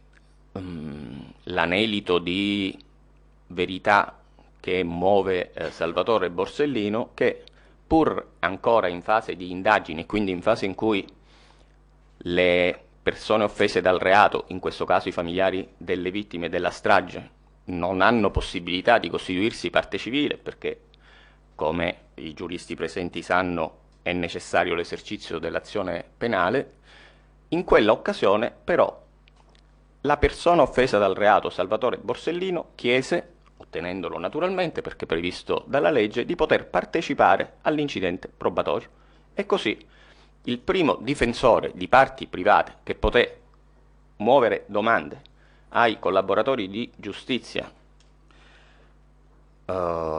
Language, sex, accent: Italian, male, native